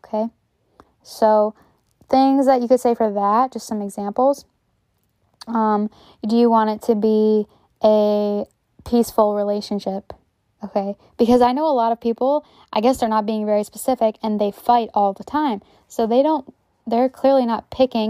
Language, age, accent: English, 10-29, American